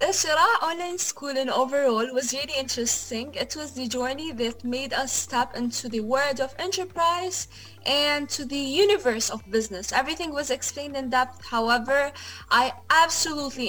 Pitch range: 240-315 Hz